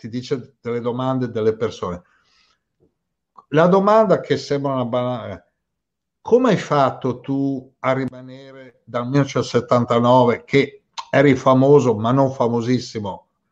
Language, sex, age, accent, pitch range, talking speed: Italian, male, 60-79, native, 120-145 Hz, 110 wpm